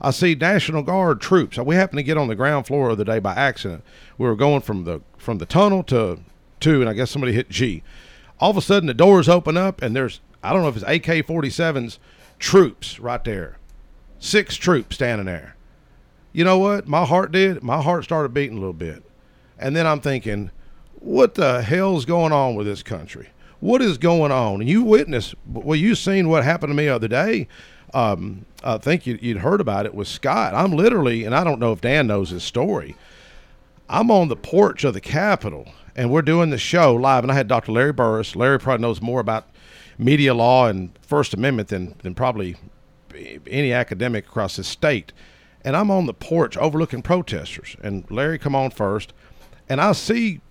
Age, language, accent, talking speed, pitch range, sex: 40-59, English, American, 200 wpm, 110-165 Hz, male